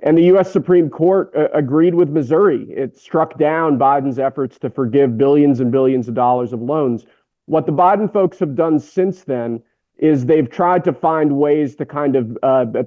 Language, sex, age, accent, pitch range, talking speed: English, male, 40-59, American, 130-155 Hz, 190 wpm